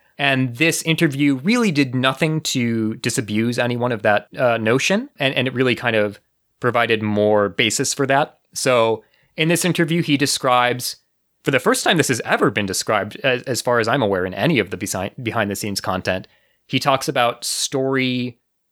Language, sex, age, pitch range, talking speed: English, male, 30-49, 110-145 Hz, 180 wpm